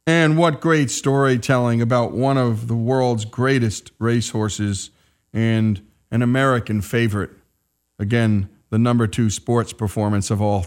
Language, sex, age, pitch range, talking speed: English, male, 40-59, 105-130 Hz, 130 wpm